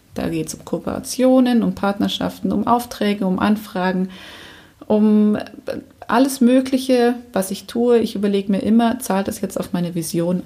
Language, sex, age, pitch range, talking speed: German, female, 30-49, 180-235 Hz, 155 wpm